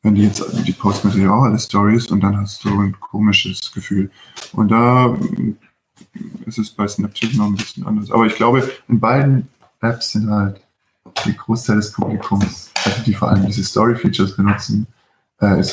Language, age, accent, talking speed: German, 20-39, German, 170 wpm